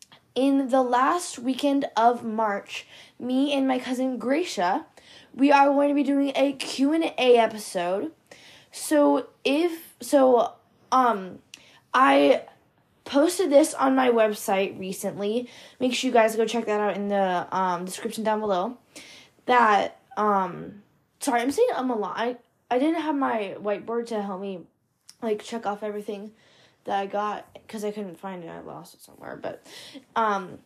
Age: 10-29